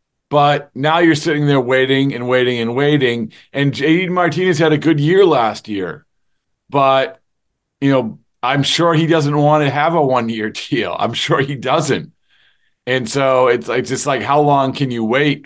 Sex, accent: male, American